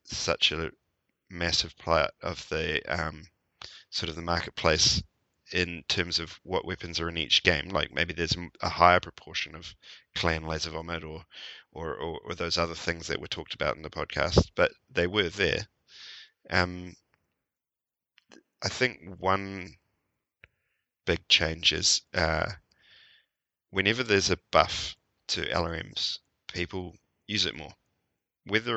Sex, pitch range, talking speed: male, 85-95 Hz, 140 wpm